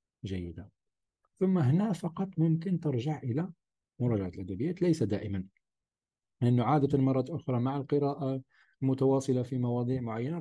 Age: 40-59